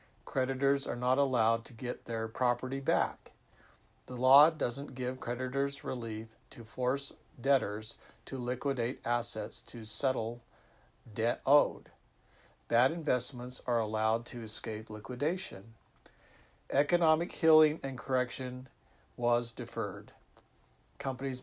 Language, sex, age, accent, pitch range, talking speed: English, male, 50-69, American, 115-140 Hz, 110 wpm